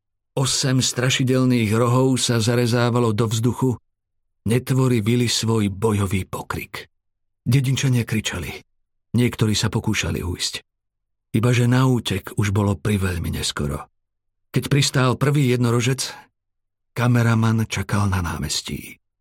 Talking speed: 105 wpm